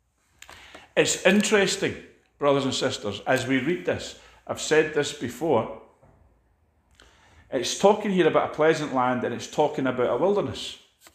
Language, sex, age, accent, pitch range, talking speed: English, male, 40-59, British, 110-165 Hz, 140 wpm